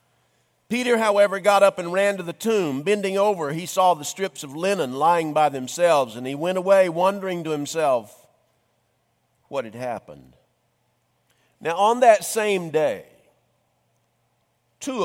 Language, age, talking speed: English, 50-69, 145 wpm